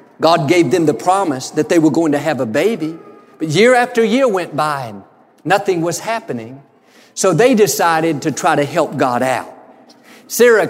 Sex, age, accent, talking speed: male, 50-69, American, 185 wpm